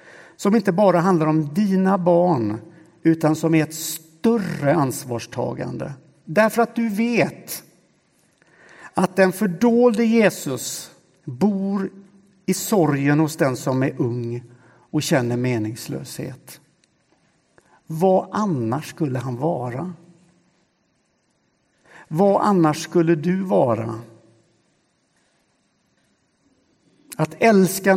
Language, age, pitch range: Swedish, 60-79, 130-180 Hz